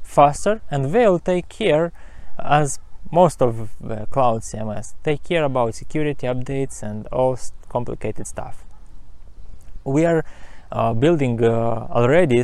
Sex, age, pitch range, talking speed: male, 20-39, 115-145 Hz, 125 wpm